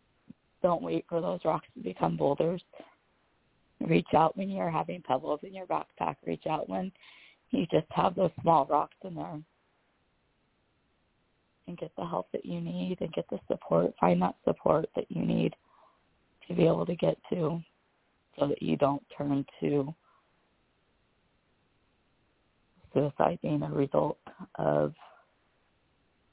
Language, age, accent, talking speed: English, 20-39, American, 140 wpm